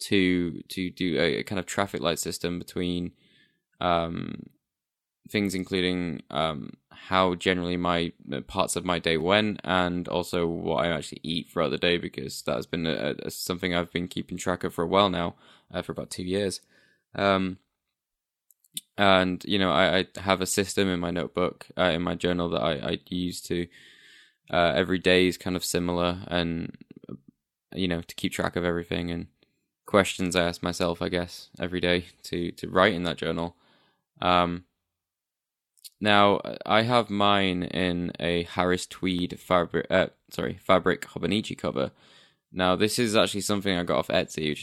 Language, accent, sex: English, British, male